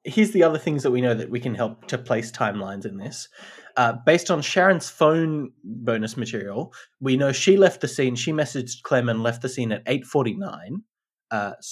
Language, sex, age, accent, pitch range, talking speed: English, male, 20-39, Australian, 115-155 Hz, 195 wpm